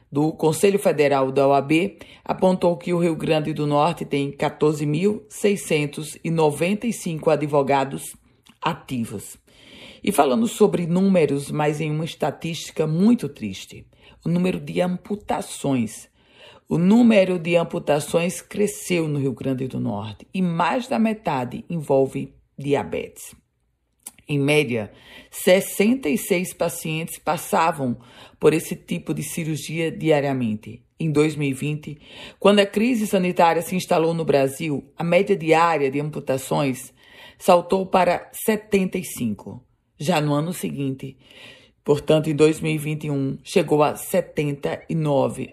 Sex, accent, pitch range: female, Brazilian, 140-180 Hz